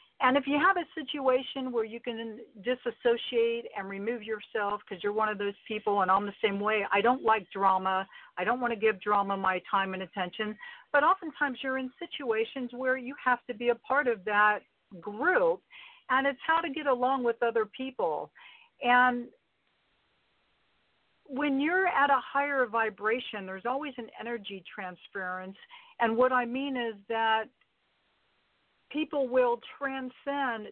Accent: American